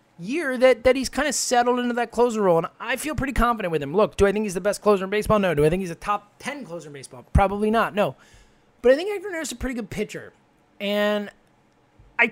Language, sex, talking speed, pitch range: English, male, 255 wpm, 155-210 Hz